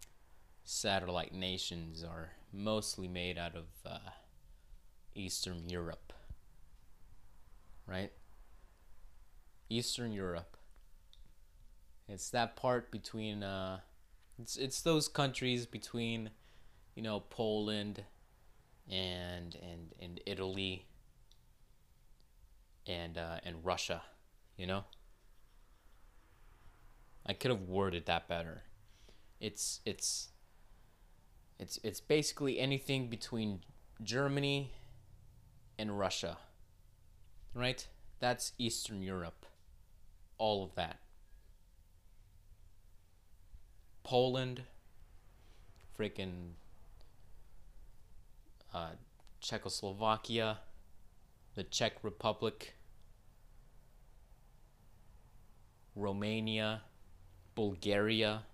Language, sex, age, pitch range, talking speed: English, male, 20-39, 90-110 Hz, 70 wpm